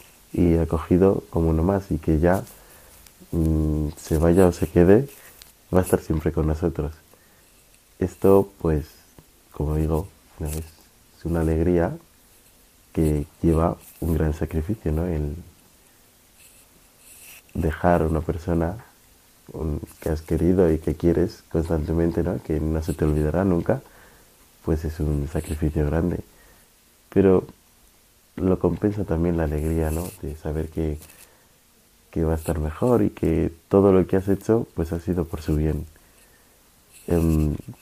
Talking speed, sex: 140 wpm, male